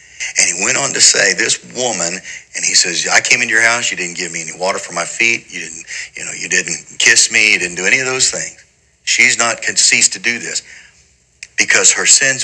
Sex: male